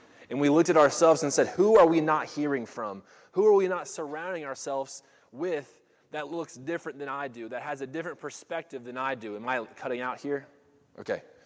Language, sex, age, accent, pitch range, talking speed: English, male, 20-39, American, 120-155 Hz, 210 wpm